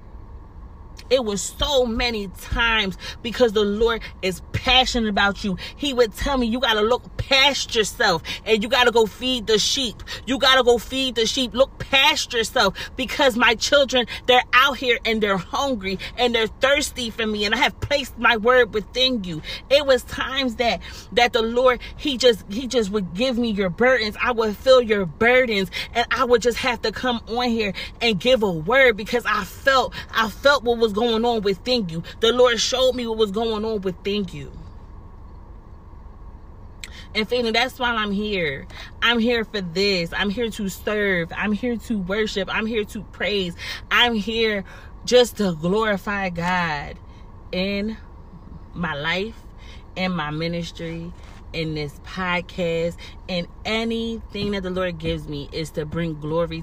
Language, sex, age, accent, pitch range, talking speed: English, female, 30-49, American, 180-245 Hz, 175 wpm